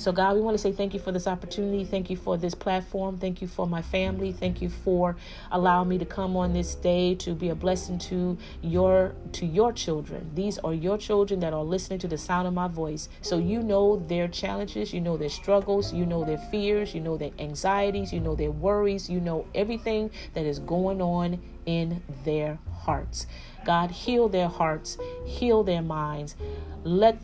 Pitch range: 160-195 Hz